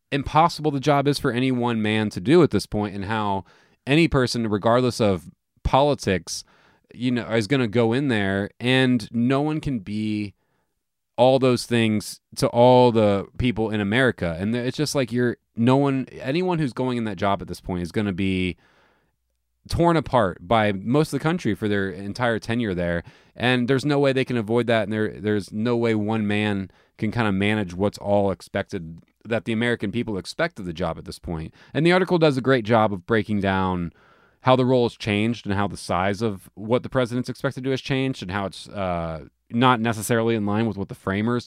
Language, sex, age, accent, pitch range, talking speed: English, male, 20-39, American, 95-125 Hz, 210 wpm